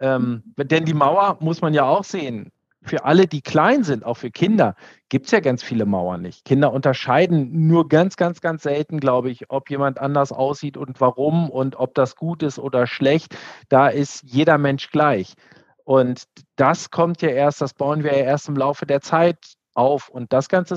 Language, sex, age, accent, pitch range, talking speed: German, male, 40-59, German, 130-165 Hz, 200 wpm